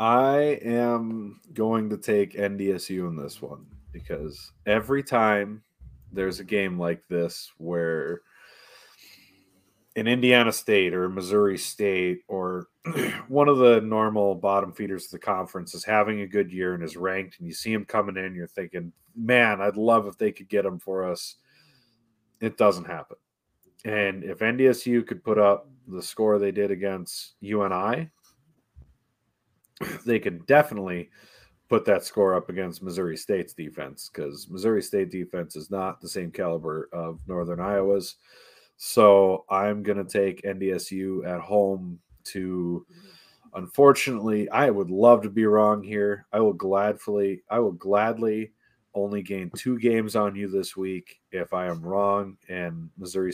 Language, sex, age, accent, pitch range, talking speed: English, male, 30-49, American, 90-110 Hz, 155 wpm